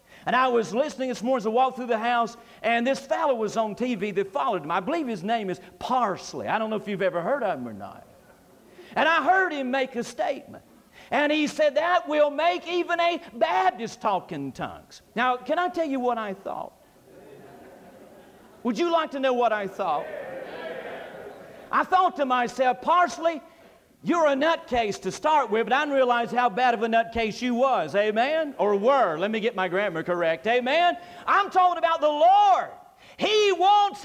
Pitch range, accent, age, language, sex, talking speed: 235-325 Hz, American, 50-69, English, male, 195 wpm